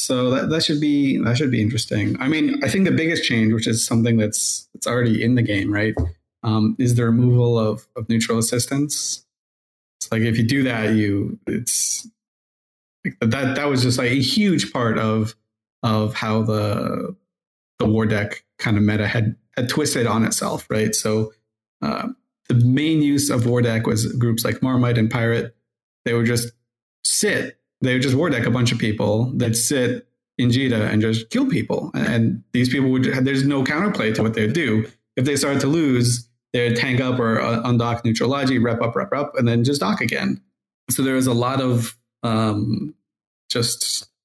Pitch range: 110-130 Hz